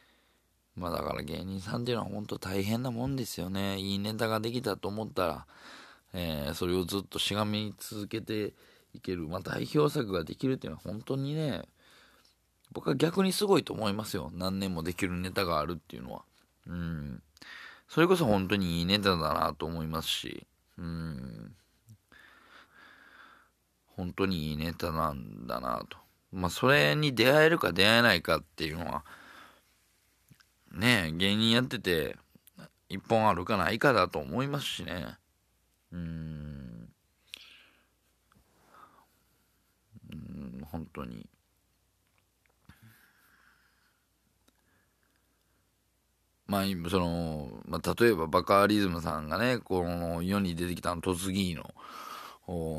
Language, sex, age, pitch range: Japanese, male, 20-39, 85-105 Hz